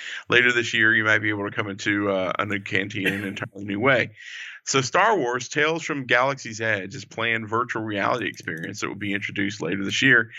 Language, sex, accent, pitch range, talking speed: English, male, American, 105-130 Hz, 220 wpm